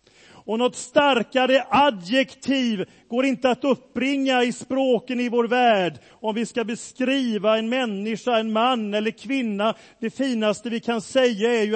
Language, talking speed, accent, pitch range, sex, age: Swedish, 155 wpm, native, 220-255 Hz, male, 40-59